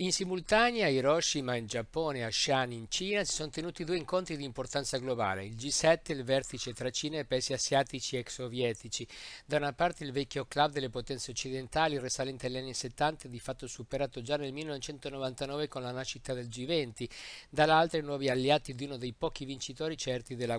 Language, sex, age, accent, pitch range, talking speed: Italian, male, 50-69, native, 125-145 Hz, 190 wpm